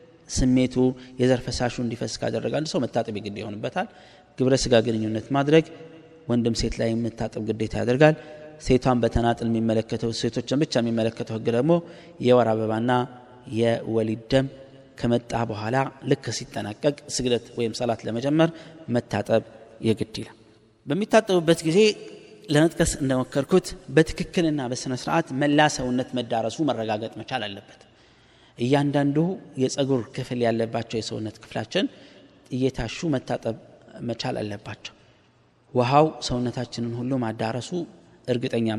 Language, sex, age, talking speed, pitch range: Amharic, male, 30-49, 105 wpm, 115-145 Hz